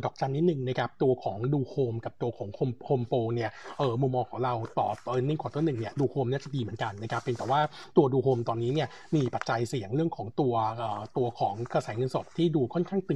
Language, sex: Thai, male